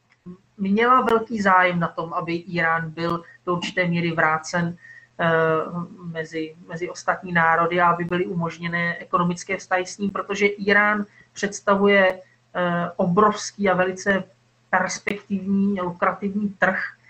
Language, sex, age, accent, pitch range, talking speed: Czech, male, 20-39, native, 170-195 Hz, 120 wpm